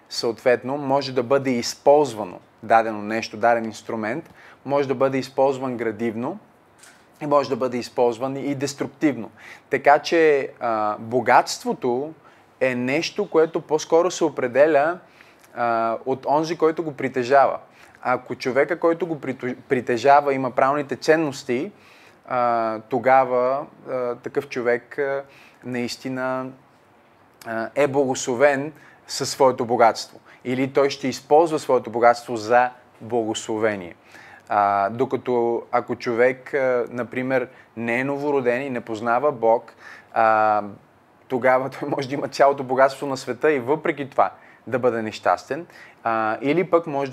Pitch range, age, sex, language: 115-140 Hz, 20-39, male, Bulgarian